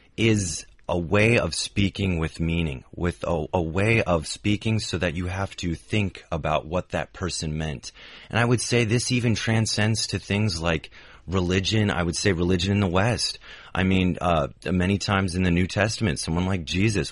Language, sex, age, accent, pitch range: Chinese, male, 30-49, American, 90-115 Hz